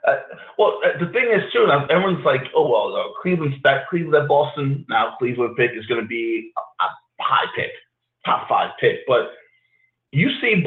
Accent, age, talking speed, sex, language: American, 30-49, 185 wpm, male, English